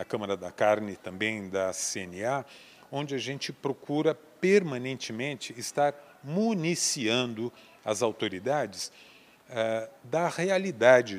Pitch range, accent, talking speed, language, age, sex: 115-155 Hz, Brazilian, 95 wpm, Portuguese, 40-59, male